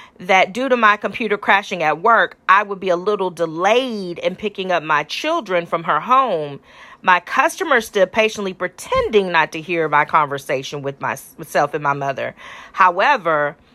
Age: 40-59